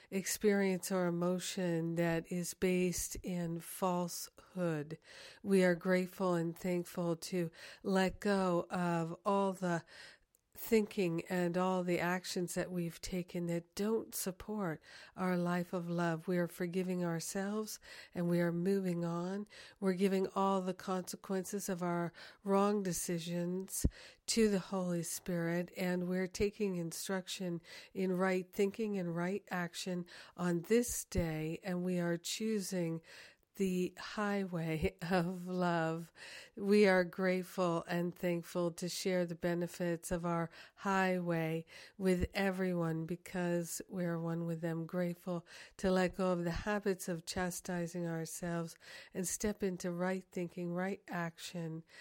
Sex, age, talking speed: female, 60-79, 130 wpm